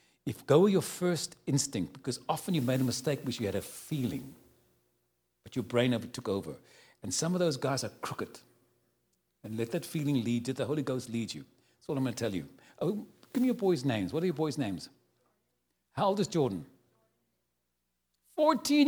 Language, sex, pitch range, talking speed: English, male, 125-175 Hz, 205 wpm